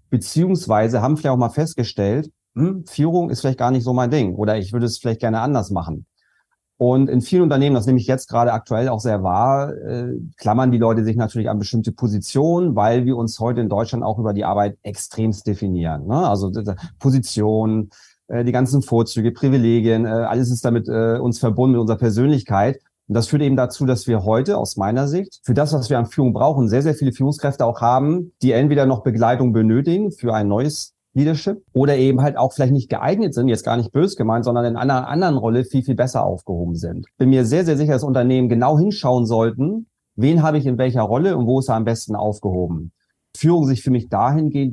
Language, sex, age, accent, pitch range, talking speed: German, male, 30-49, German, 110-135 Hz, 210 wpm